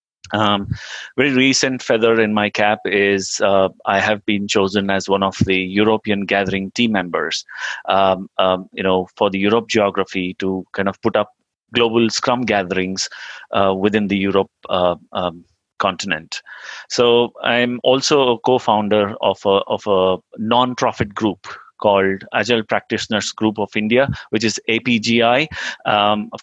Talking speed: 150 wpm